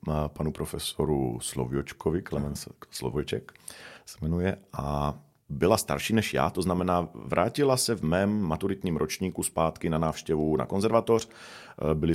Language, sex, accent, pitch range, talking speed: Czech, male, native, 80-100 Hz, 135 wpm